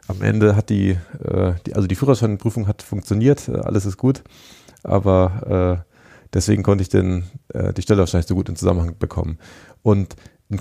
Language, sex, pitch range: German, male, 95-120 Hz